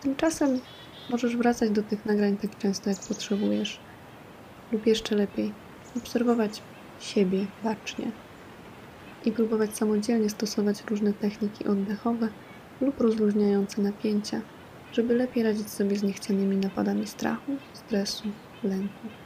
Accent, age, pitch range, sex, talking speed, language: native, 20-39, 205-240 Hz, female, 110 wpm, Polish